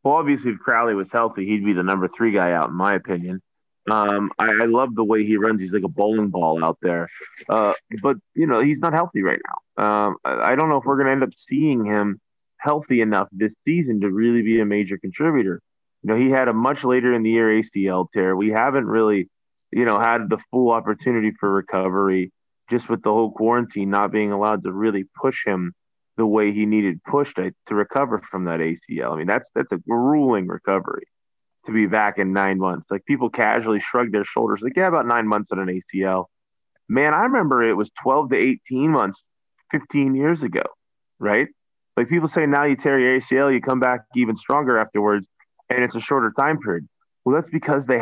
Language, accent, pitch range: English, American, 100-125 Hz